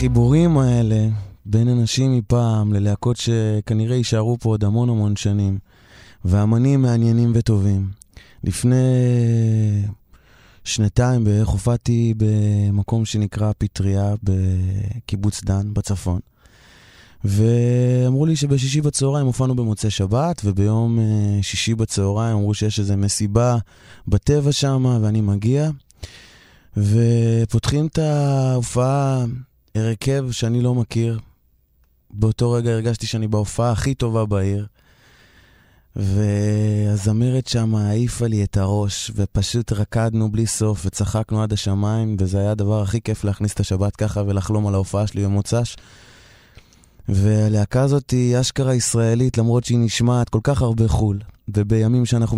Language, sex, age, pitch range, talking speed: Hebrew, male, 20-39, 105-120 Hz, 115 wpm